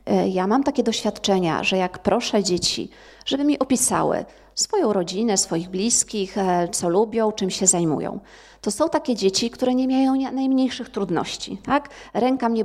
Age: 30-49